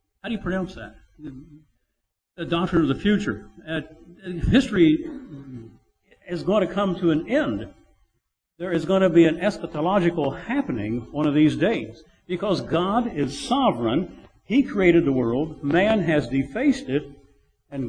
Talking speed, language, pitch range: 150 wpm, English, 145-205 Hz